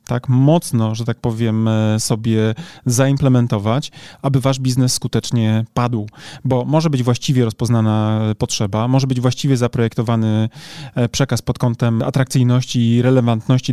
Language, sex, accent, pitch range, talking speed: Polish, male, native, 120-145 Hz, 120 wpm